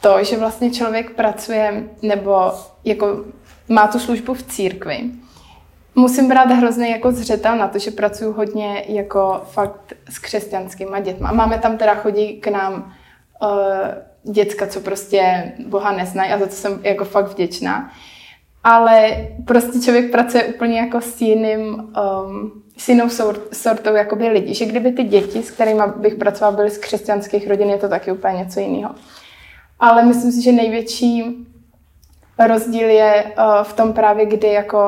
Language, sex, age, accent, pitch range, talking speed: Czech, female, 20-39, native, 200-225 Hz, 155 wpm